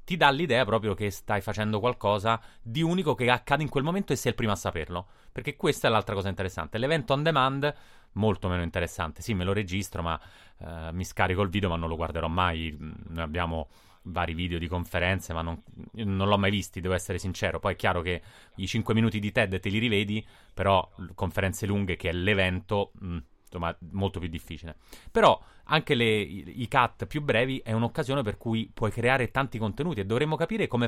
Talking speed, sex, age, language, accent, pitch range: 200 wpm, male, 30-49, Italian, native, 90-115 Hz